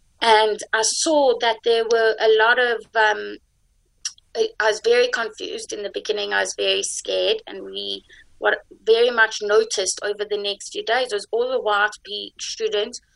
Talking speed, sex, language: 170 wpm, female, English